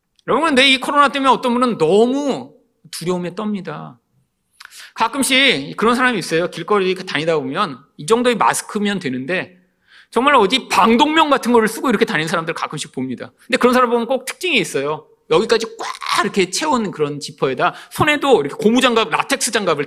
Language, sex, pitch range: Korean, male, 170-255 Hz